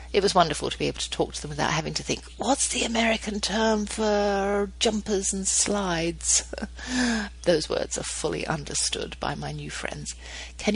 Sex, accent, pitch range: female, British, 140-210 Hz